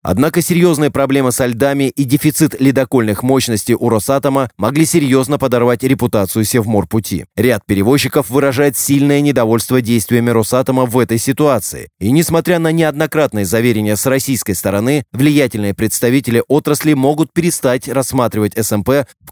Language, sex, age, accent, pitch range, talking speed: Russian, male, 20-39, native, 110-140 Hz, 135 wpm